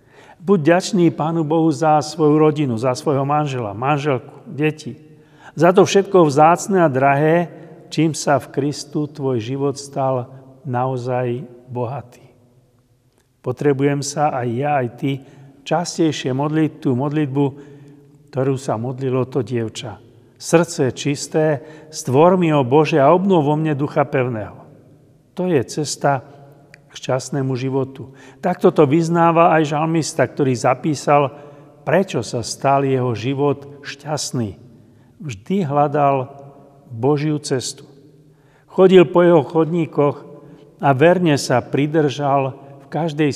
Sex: male